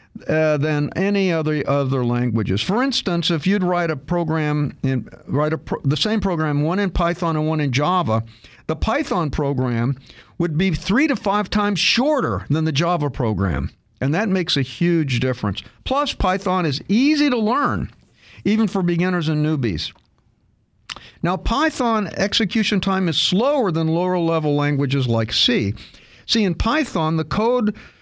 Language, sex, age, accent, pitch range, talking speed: English, male, 50-69, American, 135-190 Hz, 160 wpm